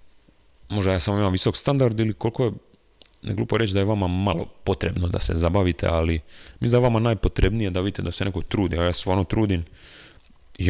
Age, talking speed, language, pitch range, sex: 30-49, 210 wpm, Croatian, 80-100 Hz, male